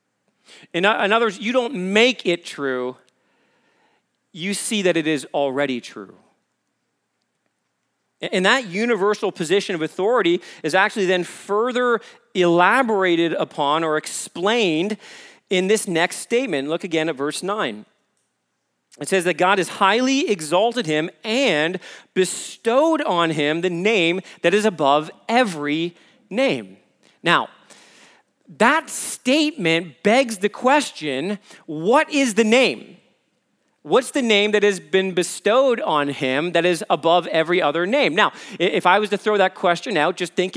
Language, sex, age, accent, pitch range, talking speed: English, male, 40-59, American, 170-225 Hz, 140 wpm